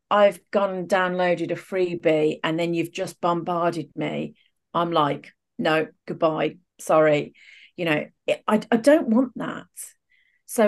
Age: 40-59